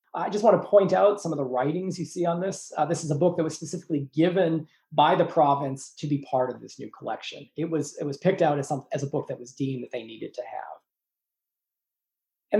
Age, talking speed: 40-59, 250 wpm